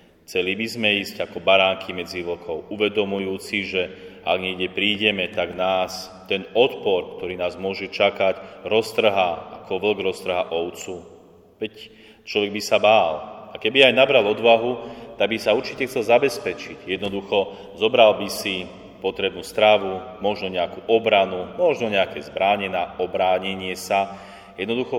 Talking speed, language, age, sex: 135 wpm, Slovak, 30-49, male